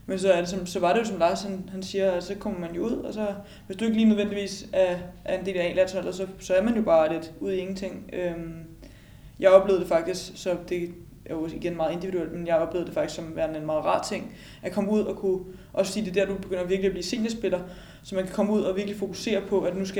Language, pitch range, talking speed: Danish, 175-195 Hz, 275 wpm